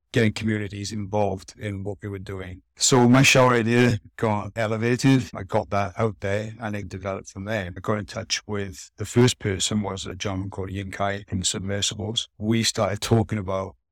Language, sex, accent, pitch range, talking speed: English, male, British, 95-110 Hz, 185 wpm